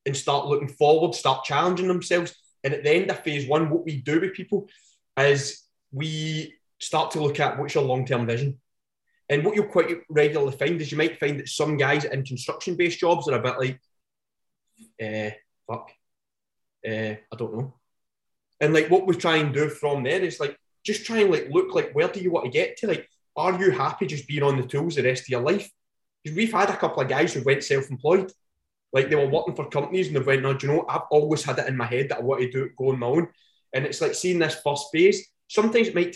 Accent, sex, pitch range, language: British, male, 135-175 Hz, English